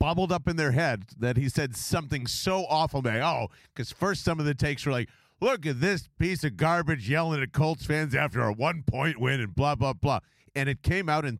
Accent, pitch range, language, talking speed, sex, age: American, 125-170 Hz, English, 230 wpm, male, 40-59